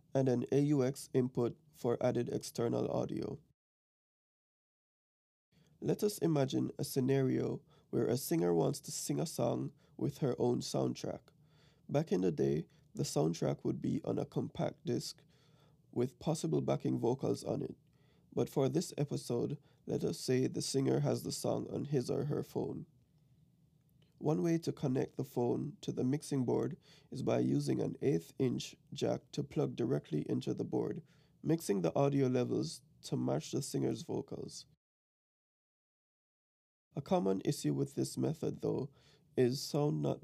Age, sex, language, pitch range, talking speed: 20-39, male, English, 130-155 Hz, 150 wpm